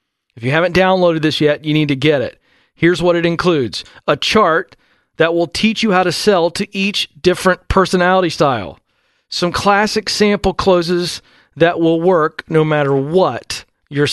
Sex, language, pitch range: male, English, 150-195 Hz